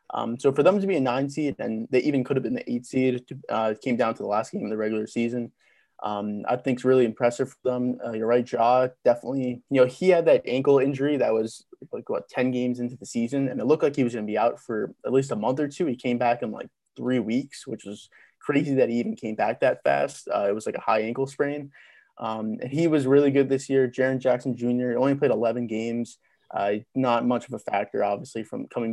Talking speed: 260 wpm